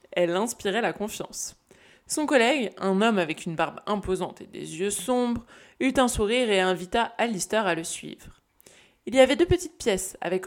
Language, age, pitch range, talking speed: French, 20-39, 185-235 Hz, 185 wpm